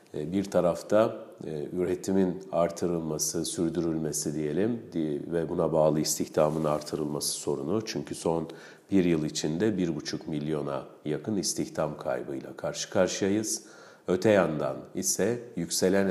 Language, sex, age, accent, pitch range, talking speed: Turkish, male, 50-69, native, 80-95 Hz, 105 wpm